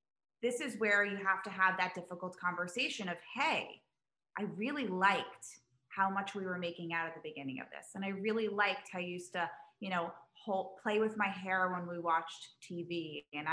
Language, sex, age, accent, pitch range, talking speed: English, female, 20-39, American, 185-270 Hz, 200 wpm